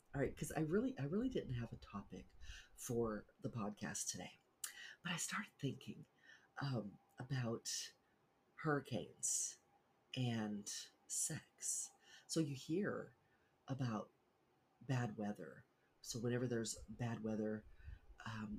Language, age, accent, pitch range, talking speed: English, 40-59, American, 105-125 Hz, 115 wpm